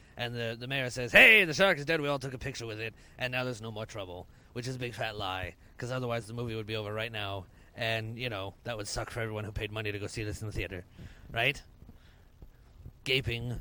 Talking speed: 255 wpm